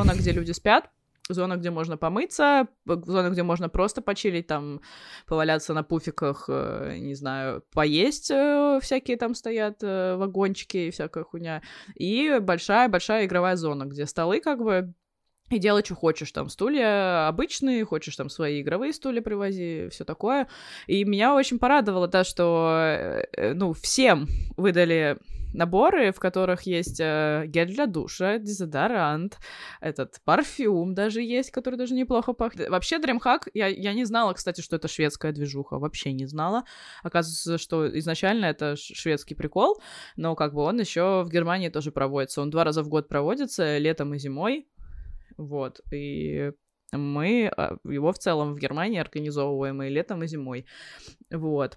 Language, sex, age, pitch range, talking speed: Russian, female, 20-39, 155-215 Hz, 150 wpm